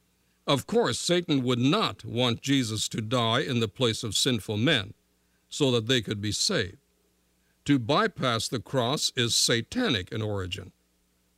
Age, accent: 60-79, American